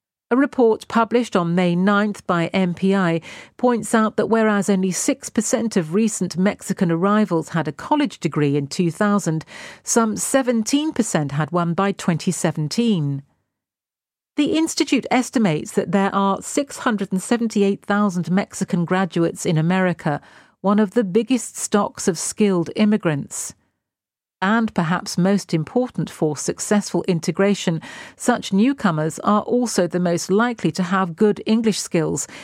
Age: 50-69